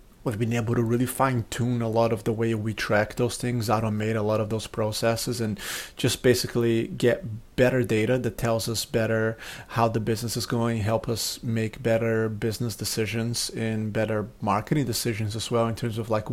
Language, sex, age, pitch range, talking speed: English, male, 30-49, 115-125 Hz, 190 wpm